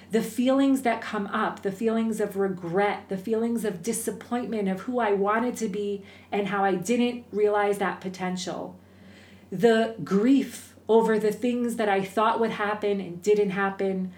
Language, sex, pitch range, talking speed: English, female, 190-225 Hz, 165 wpm